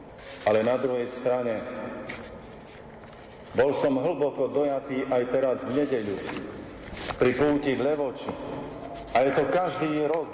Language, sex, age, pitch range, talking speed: Slovak, male, 50-69, 130-160 Hz, 120 wpm